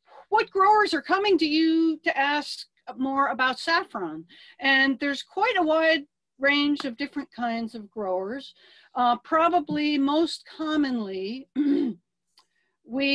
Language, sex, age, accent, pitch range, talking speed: English, female, 40-59, American, 235-300 Hz, 125 wpm